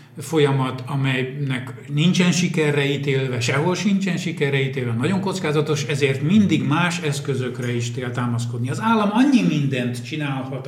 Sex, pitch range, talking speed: male, 130-165 Hz, 125 wpm